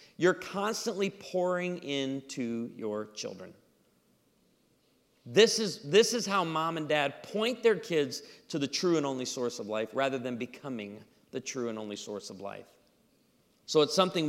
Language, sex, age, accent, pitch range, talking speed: English, male, 40-59, American, 135-180 Hz, 155 wpm